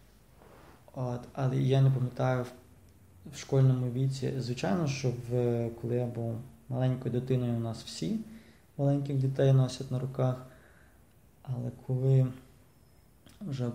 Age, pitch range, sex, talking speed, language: 20-39, 120-130 Hz, male, 120 wpm, English